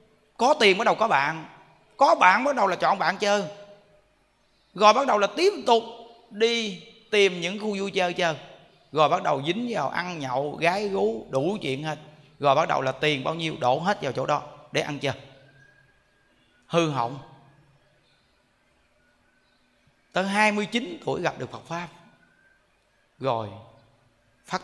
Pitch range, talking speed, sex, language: 140-220 Hz, 160 wpm, male, Vietnamese